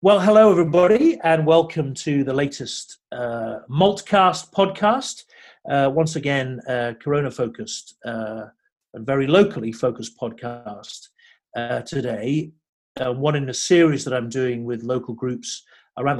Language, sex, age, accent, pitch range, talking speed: English, male, 40-59, British, 120-160 Hz, 135 wpm